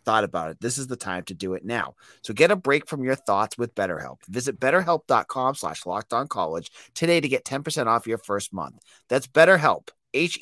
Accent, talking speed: American, 215 wpm